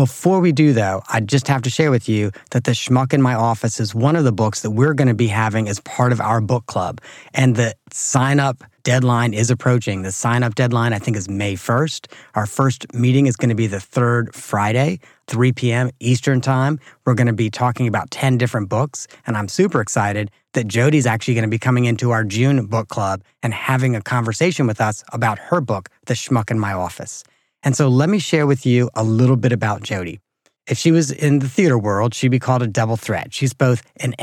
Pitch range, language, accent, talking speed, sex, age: 115-135 Hz, English, American, 225 wpm, male, 30-49